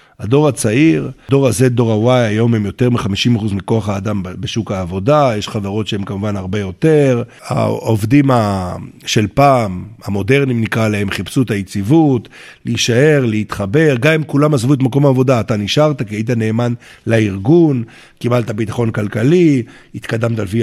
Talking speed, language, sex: 140 wpm, Hebrew, male